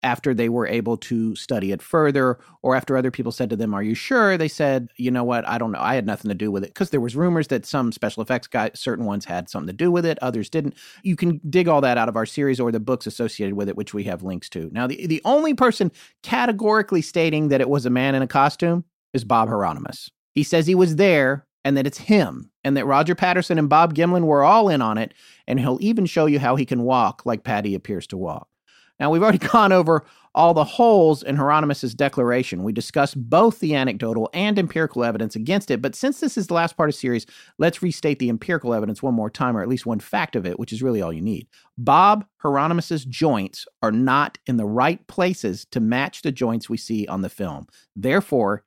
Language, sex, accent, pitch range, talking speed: English, male, American, 115-170 Hz, 240 wpm